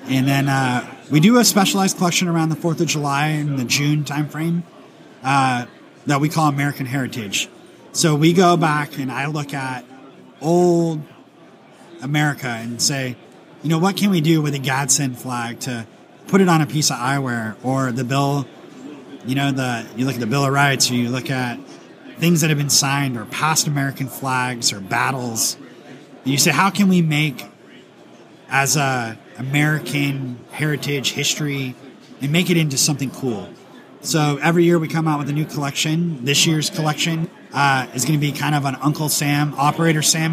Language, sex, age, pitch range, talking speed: English, male, 30-49, 130-155 Hz, 185 wpm